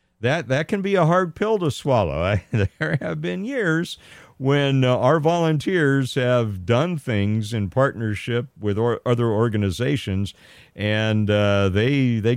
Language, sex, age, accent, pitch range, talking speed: English, male, 50-69, American, 90-120 Hz, 150 wpm